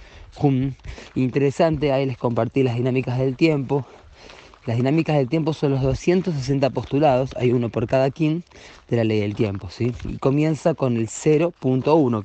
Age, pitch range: 20-39, 105-135 Hz